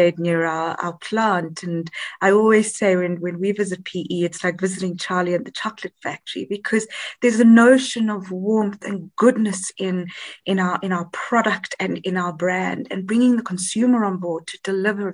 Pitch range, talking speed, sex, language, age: 175-215 Hz, 185 wpm, female, English, 20-39